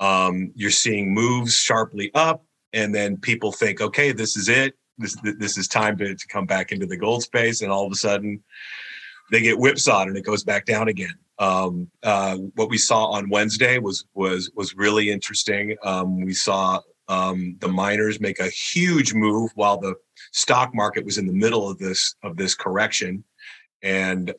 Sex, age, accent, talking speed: male, 40-59, American, 190 wpm